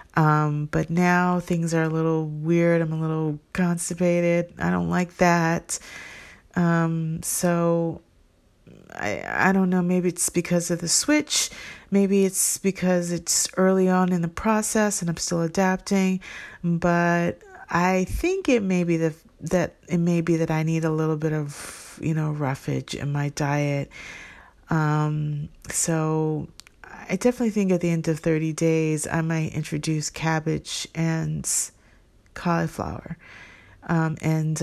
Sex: female